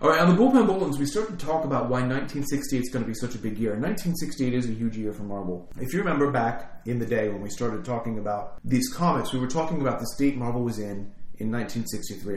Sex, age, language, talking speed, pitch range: male, 30-49, English, 260 wpm, 105-130 Hz